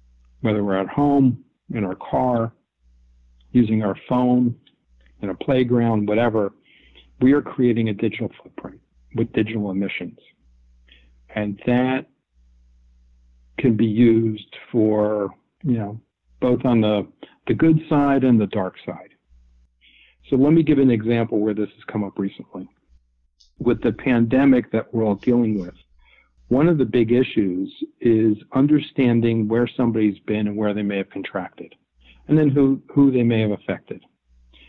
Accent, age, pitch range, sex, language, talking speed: American, 50-69, 90-120 Hz, male, English, 145 wpm